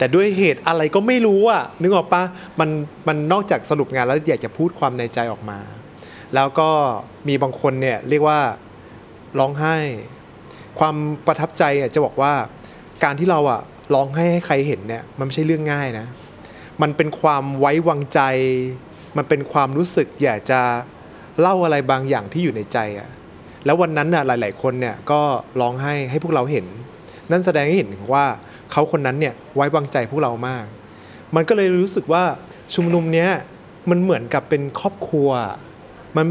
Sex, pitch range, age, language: male, 125-160 Hz, 20-39, Thai